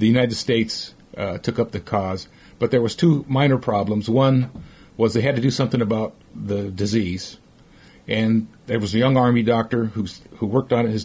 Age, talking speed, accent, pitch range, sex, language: 50-69, 200 wpm, American, 105-125 Hz, male, English